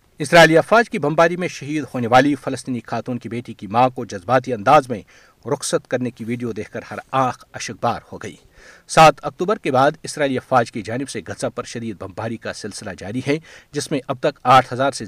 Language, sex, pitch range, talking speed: Urdu, male, 115-150 Hz, 210 wpm